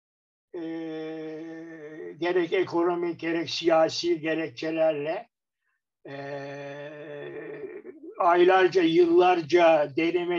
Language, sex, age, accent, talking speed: Turkish, male, 60-79, native, 60 wpm